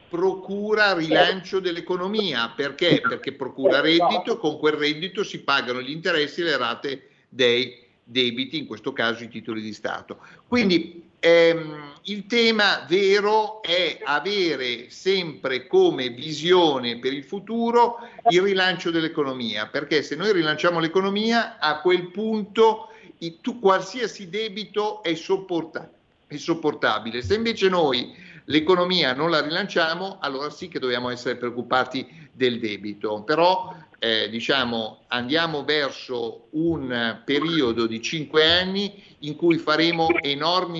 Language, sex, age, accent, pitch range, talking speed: Italian, male, 50-69, native, 140-190 Hz, 120 wpm